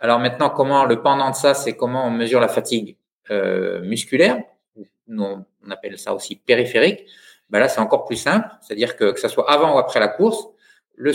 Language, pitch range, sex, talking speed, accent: French, 105-150 Hz, male, 205 wpm, French